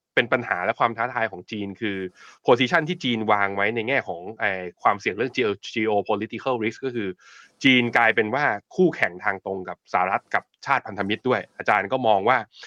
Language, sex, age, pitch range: Thai, male, 20-39, 110-135 Hz